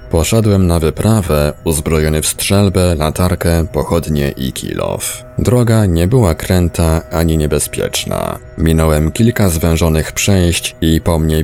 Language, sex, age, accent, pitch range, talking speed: Polish, male, 20-39, native, 80-100 Hz, 120 wpm